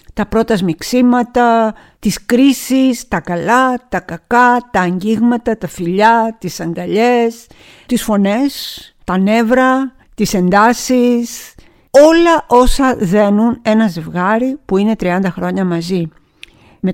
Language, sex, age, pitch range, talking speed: Greek, female, 50-69, 185-245 Hz, 115 wpm